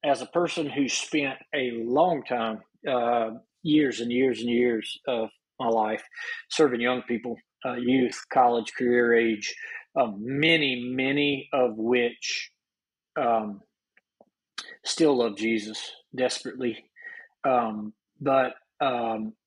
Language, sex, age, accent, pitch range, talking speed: English, male, 40-59, American, 115-145 Hz, 115 wpm